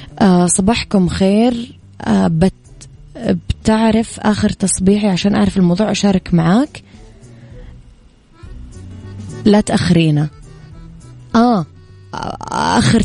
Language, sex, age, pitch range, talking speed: Arabic, female, 20-39, 175-205 Hz, 70 wpm